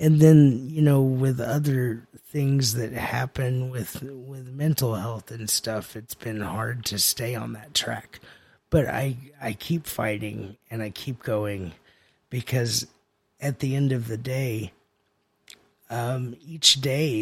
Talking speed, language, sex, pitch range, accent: 145 wpm, English, male, 105-130 Hz, American